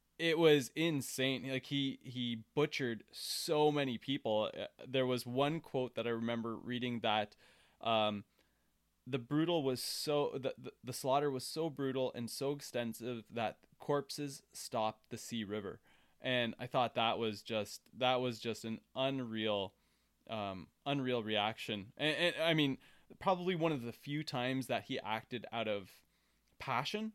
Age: 20-39